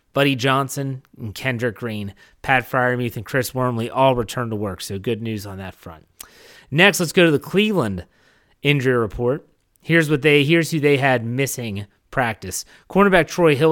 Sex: male